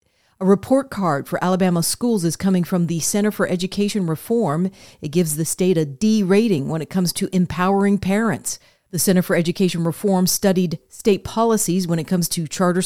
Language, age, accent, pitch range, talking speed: English, 40-59, American, 165-195 Hz, 185 wpm